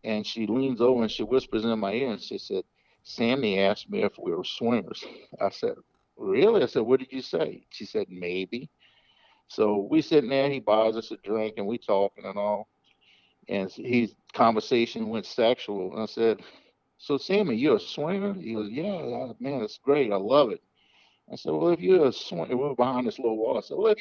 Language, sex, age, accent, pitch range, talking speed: English, male, 50-69, American, 105-135 Hz, 215 wpm